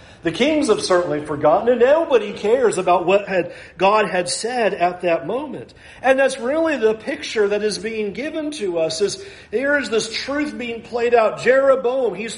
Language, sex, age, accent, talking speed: English, male, 40-59, American, 185 wpm